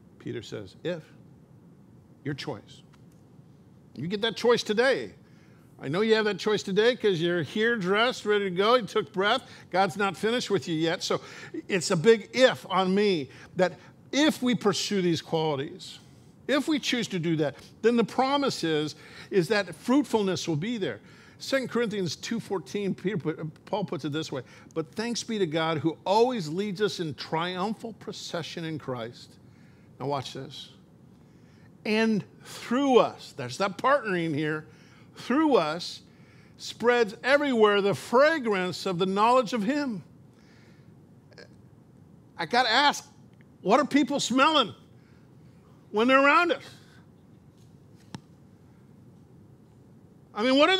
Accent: American